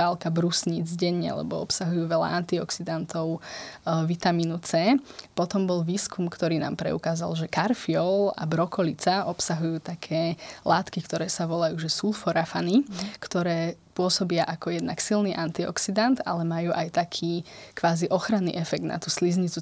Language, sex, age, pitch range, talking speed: Slovak, female, 20-39, 165-180 Hz, 130 wpm